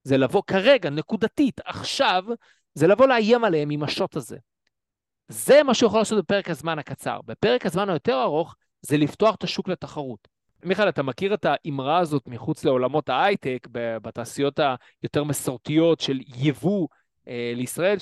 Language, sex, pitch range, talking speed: Hebrew, male, 150-200 Hz, 115 wpm